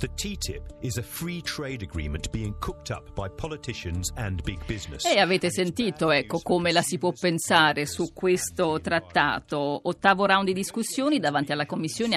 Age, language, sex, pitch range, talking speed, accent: 50-69, Italian, female, 155-205 Hz, 165 wpm, native